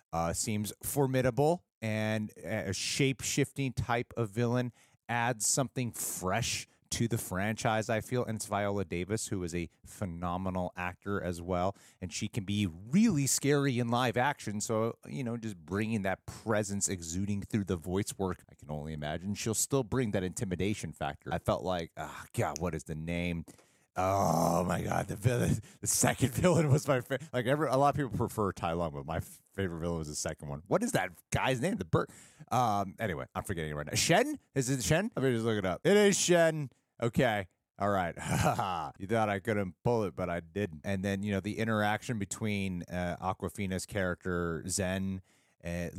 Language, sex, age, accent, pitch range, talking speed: English, male, 30-49, American, 95-125 Hz, 195 wpm